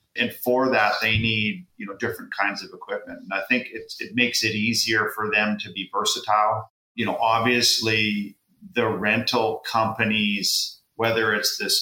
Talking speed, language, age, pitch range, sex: 170 wpm, English, 40-59, 100-115 Hz, male